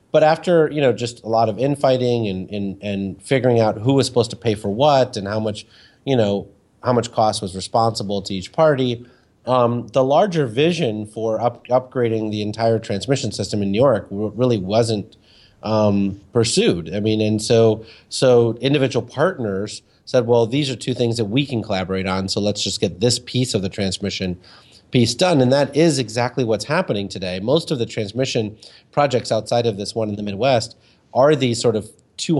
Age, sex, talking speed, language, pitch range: 30-49, male, 195 wpm, English, 100-125 Hz